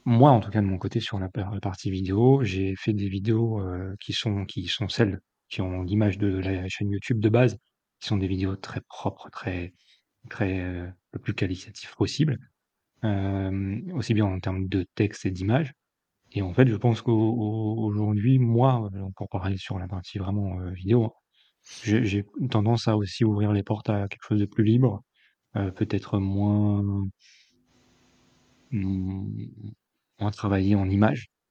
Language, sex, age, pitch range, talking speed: French, male, 30-49, 95-110 Hz, 170 wpm